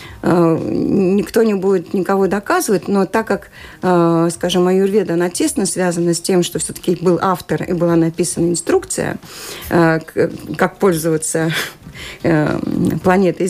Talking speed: 115 wpm